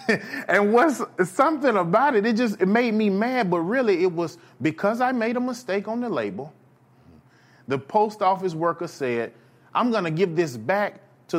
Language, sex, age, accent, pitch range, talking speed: English, male, 30-49, American, 135-195 Hz, 180 wpm